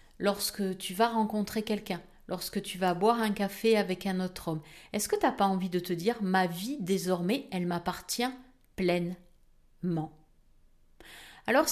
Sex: female